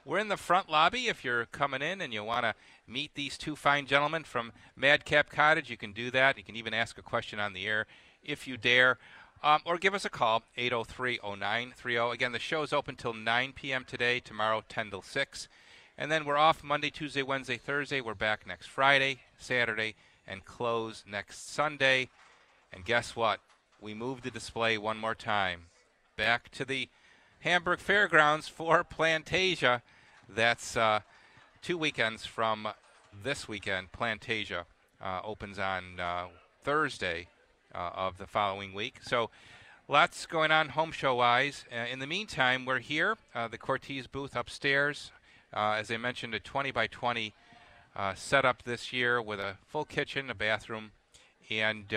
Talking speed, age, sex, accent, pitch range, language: 165 wpm, 40-59, male, American, 105-140 Hz, English